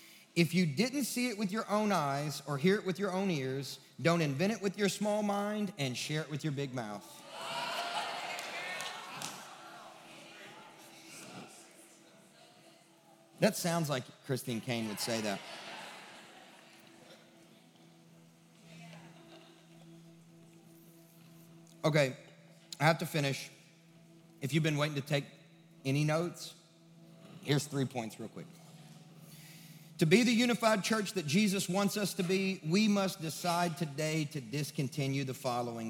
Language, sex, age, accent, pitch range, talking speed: English, male, 40-59, American, 140-170 Hz, 125 wpm